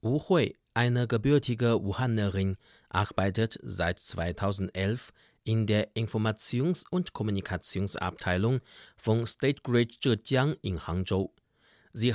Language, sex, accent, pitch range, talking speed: German, male, German, 95-125 Hz, 100 wpm